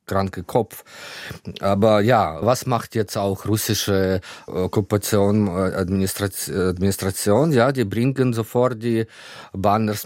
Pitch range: 95-125 Hz